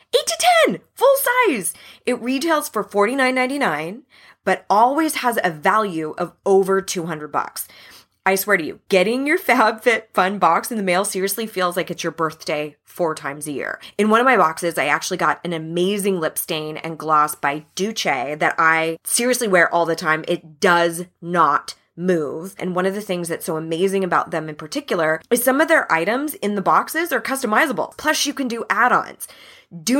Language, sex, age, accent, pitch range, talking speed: English, female, 20-39, American, 170-235 Hz, 185 wpm